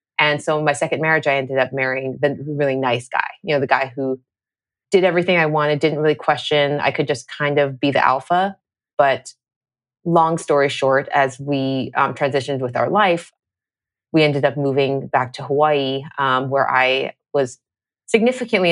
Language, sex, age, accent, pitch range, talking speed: English, female, 30-49, American, 130-150 Hz, 185 wpm